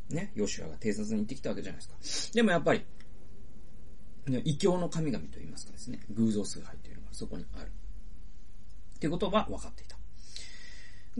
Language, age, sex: Japanese, 40-59, male